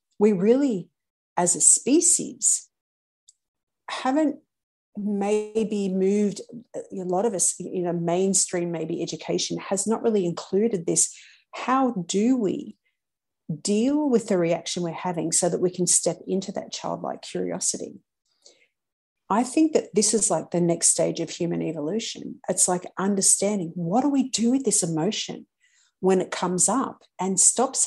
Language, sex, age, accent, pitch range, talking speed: English, female, 50-69, Australian, 170-230 Hz, 145 wpm